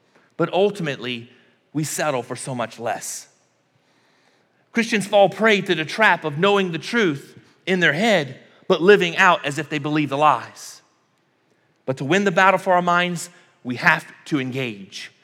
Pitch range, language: 160-215 Hz, English